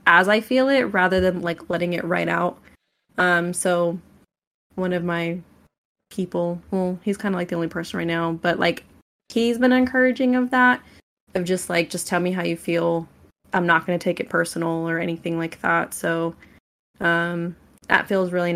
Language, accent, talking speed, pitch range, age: English, American, 190 wpm, 170-195 Hz, 20-39